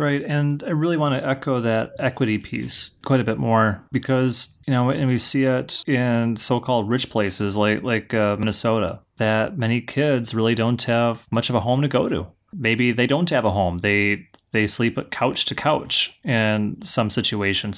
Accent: American